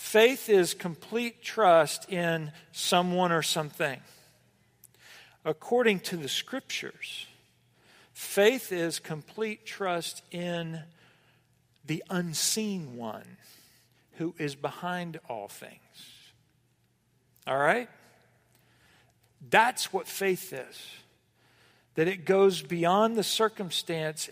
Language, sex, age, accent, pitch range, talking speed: English, male, 50-69, American, 150-190 Hz, 90 wpm